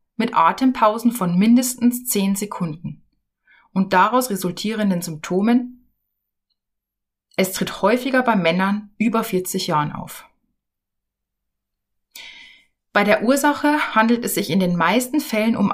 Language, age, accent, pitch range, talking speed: German, 30-49, German, 170-235 Hz, 115 wpm